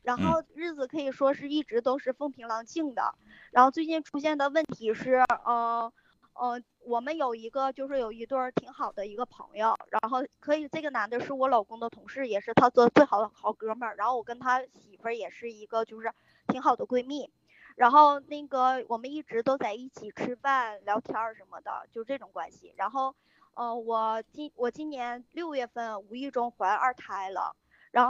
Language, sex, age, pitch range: Chinese, male, 20-39, 225-275 Hz